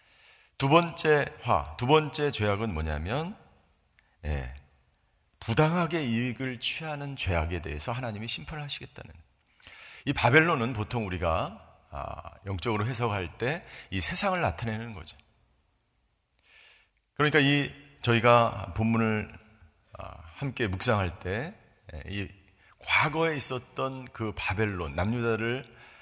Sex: male